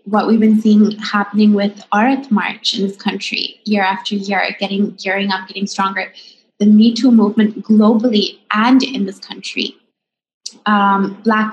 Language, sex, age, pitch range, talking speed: Urdu, female, 20-39, 195-225 Hz, 155 wpm